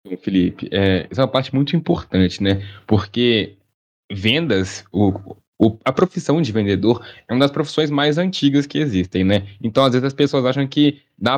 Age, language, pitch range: 10-29, Portuguese, 115-150 Hz